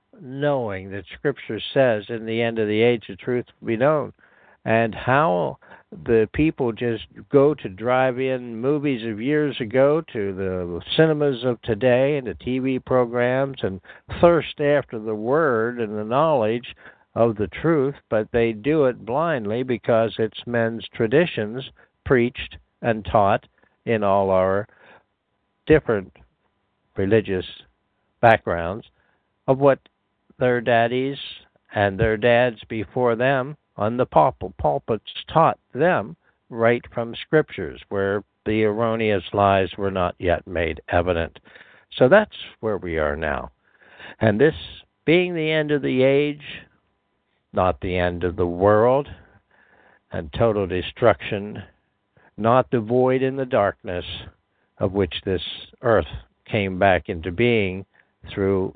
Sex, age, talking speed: male, 60-79, 135 wpm